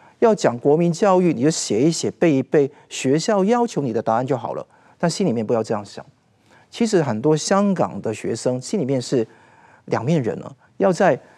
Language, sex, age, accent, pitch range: Chinese, male, 50-69, native, 125-170 Hz